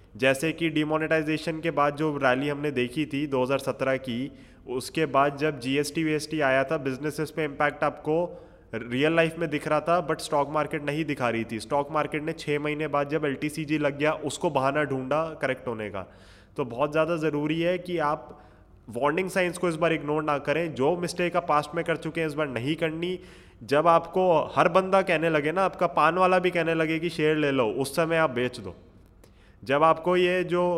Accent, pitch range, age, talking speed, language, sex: native, 135-160 Hz, 20-39, 205 wpm, Hindi, male